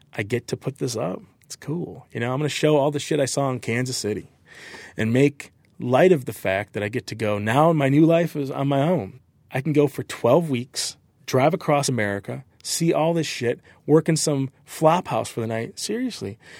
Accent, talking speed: American, 230 wpm